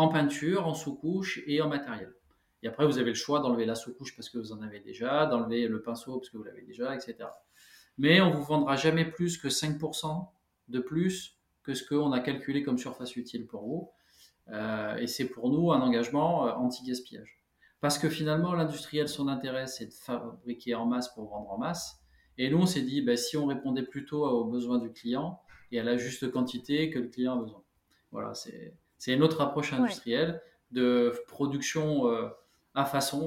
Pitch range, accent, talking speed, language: 125-155 Hz, French, 200 wpm, French